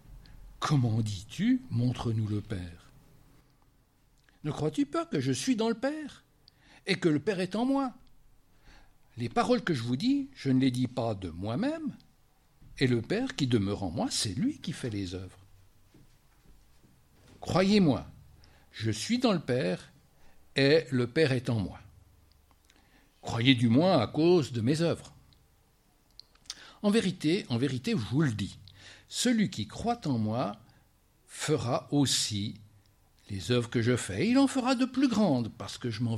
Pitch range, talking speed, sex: 100-155 Hz, 175 wpm, male